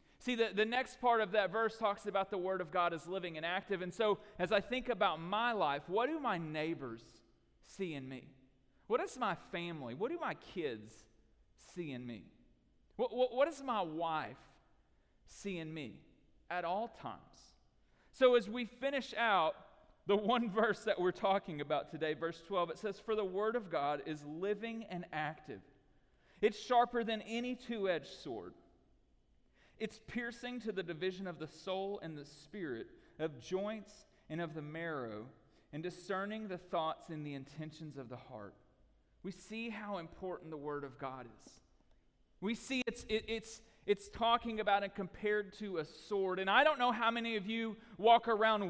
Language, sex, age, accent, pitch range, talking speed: English, male, 40-59, American, 155-220 Hz, 180 wpm